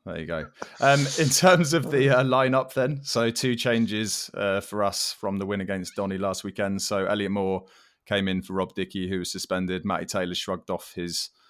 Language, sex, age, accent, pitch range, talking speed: English, male, 20-39, British, 90-105 Hz, 210 wpm